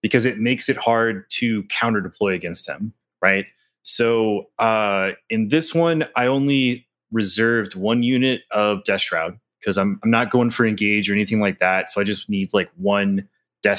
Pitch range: 95-115 Hz